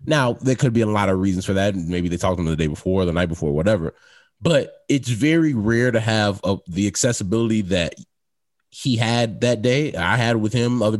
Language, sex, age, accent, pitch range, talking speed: English, male, 20-39, American, 100-125 Hz, 225 wpm